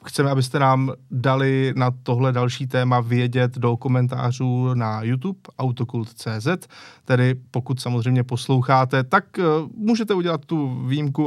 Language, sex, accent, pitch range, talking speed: Czech, male, native, 125-155 Hz, 120 wpm